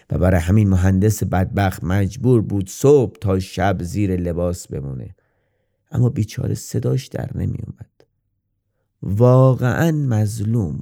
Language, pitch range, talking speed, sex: Persian, 90-110 Hz, 110 wpm, male